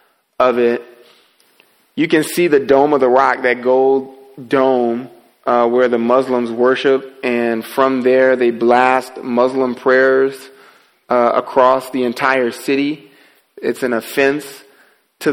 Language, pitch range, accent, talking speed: English, 125-140 Hz, American, 135 wpm